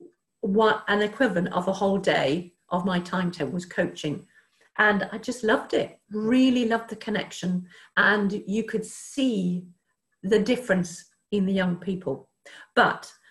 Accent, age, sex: British, 50-69, female